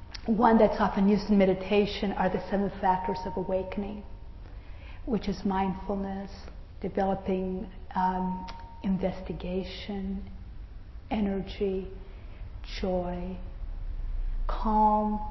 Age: 40-59